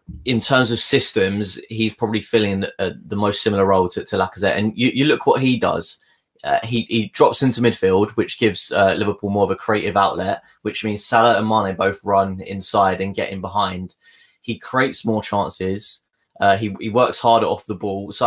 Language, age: English, 20-39